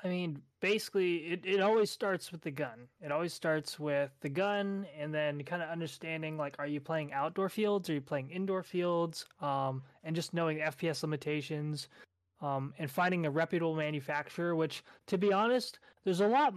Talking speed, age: 185 wpm, 20-39